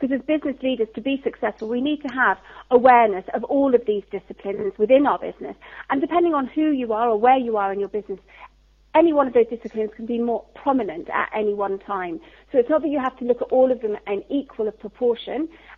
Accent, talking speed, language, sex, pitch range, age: British, 230 wpm, English, female, 215-275 Hz, 40-59